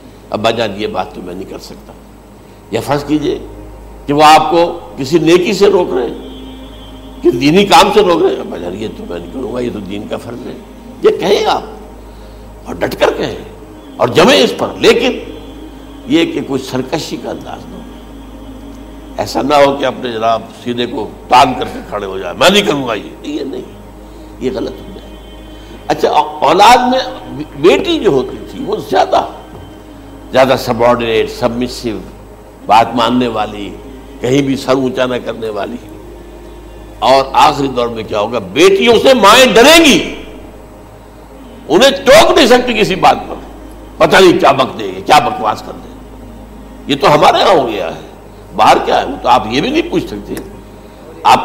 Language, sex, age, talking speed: Urdu, male, 60-79, 180 wpm